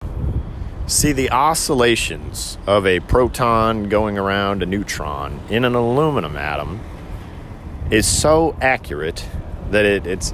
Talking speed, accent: 110 wpm, American